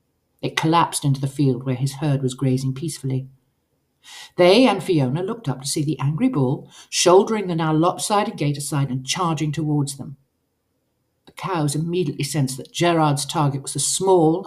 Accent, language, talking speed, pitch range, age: British, English, 170 wpm, 140-170 Hz, 50-69